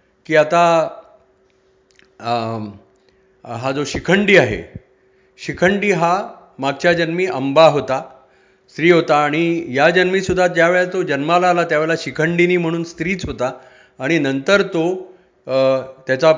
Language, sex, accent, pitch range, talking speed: Marathi, male, native, 135-180 Hz, 120 wpm